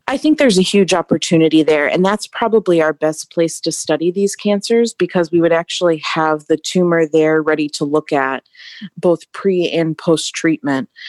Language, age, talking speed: English, 30-49, 180 wpm